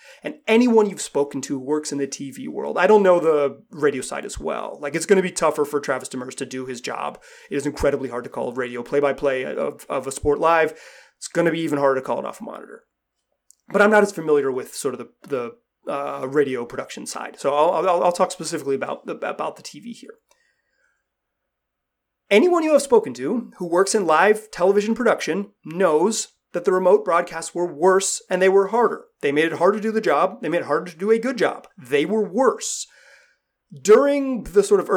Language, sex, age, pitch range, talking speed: English, male, 30-49, 150-225 Hz, 220 wpm